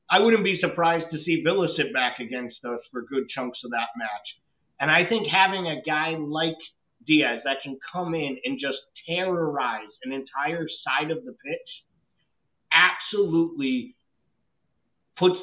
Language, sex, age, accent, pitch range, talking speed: English, male, 30-49, American, 135-175 Hz, 155 wpm